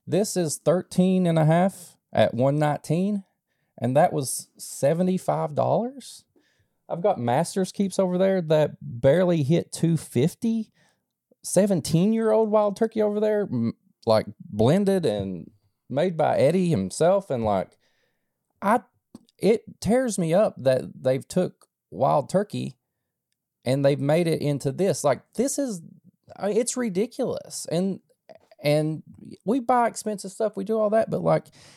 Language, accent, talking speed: English, American, 130 wpm